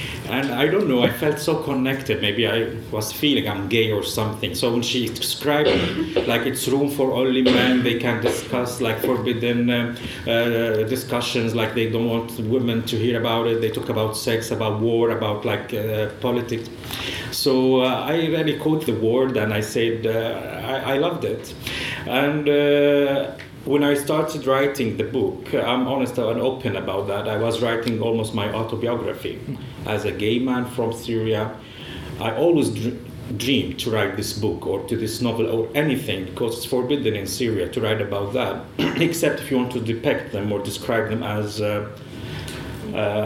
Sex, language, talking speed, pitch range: male, Swedish, 180 wpm, 110-130 Hz